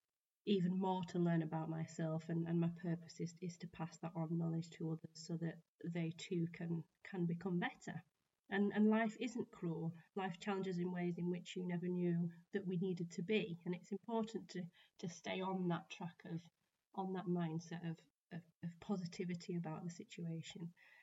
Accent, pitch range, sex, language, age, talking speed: British, 170-190 Hz, female, English, 30-49, 190 wpm